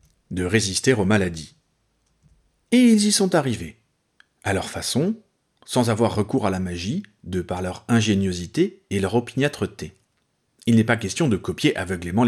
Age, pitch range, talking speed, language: 40-59, 95-130 Hz, 155 wpm, French